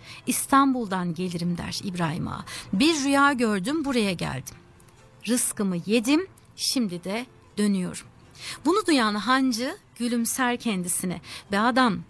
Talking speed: 110 wpm